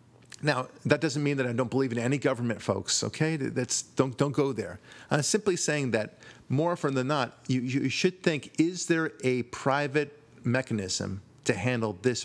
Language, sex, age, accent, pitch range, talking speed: English, male, 40-59, American, 110-145 Hz, 185 wpm